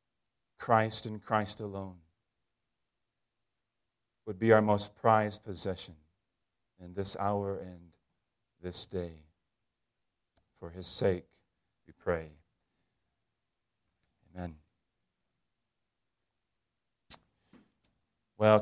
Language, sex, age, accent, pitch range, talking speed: English, male, 40-59, American, 95-115 Hz, 75 wpm